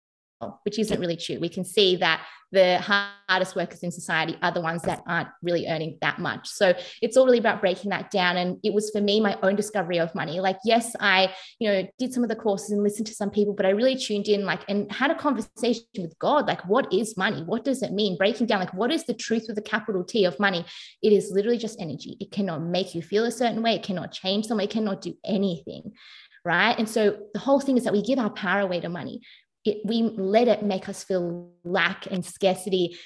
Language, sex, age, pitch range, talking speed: English, female, 20-39, 190-225 Hz, 245 wpm